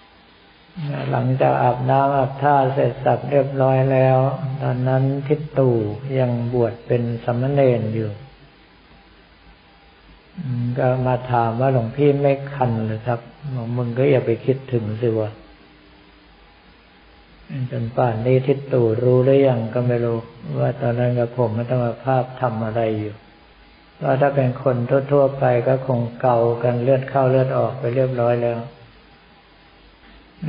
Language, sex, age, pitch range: Thai, male, 60-79, 120-140 Hz